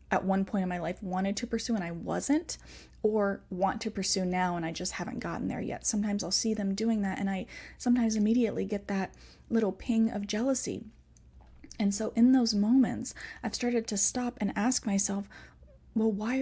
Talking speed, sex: 195 wpm, female